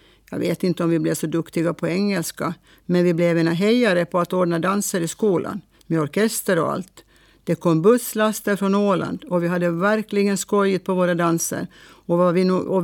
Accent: Norwegian